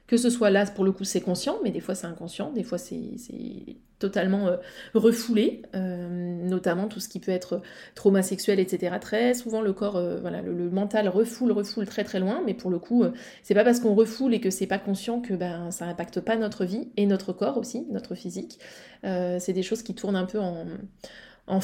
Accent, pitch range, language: French, 180-230 Hz, French